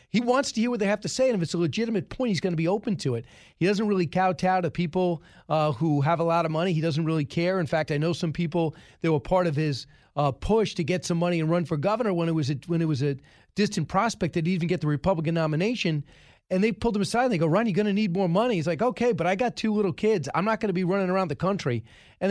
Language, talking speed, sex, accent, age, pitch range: English, 300 wpm, male, American, 40-59, 160-205 Hz